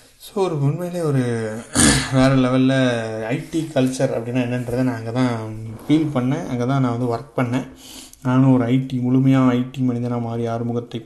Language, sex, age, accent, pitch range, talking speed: Tamil, male, 30-49, native, 120-135 Hz, 155 wpm